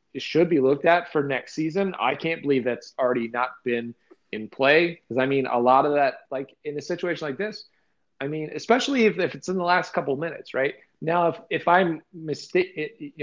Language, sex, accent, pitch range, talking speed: English, male, American, 125-165 Hz, 215 wpm